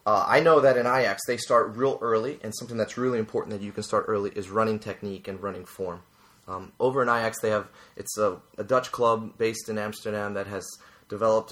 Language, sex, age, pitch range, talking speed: English, male, 30-49, 100-115 Hz, 225 wpm